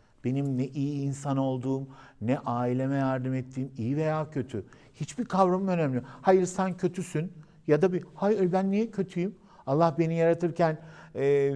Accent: native